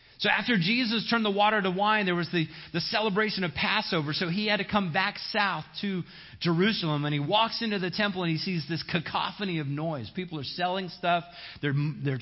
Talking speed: 210 wpm